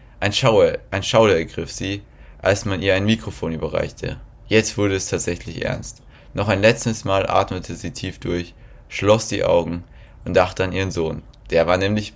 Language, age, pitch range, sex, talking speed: German, 20-39, 85-105 Hz, male, 180 wpm